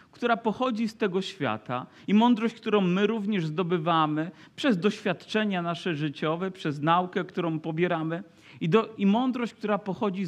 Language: Polish